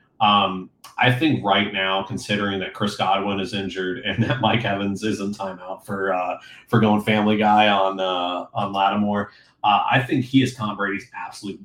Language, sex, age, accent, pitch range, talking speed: English, male, 30-49, American, 95-110 Hz, 185 wpm